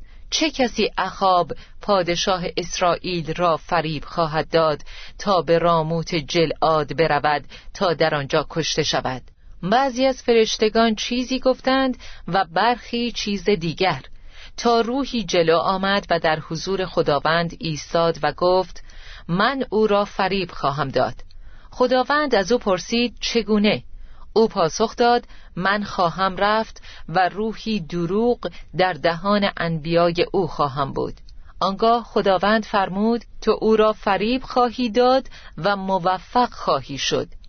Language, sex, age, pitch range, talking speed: Persian, female, 40-59, 165-220 Hz, 125 wpm